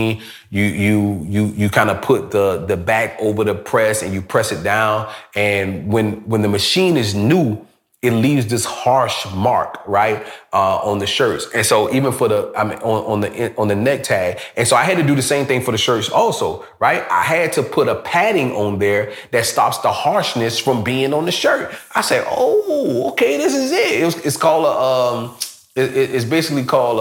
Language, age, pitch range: English, 30-49, 105-140 Hz